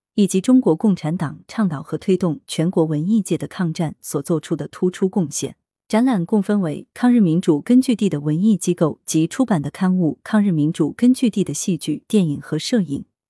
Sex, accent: female, native